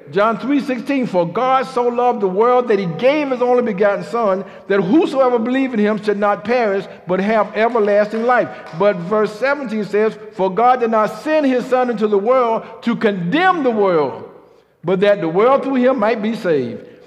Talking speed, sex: 195 wpm, male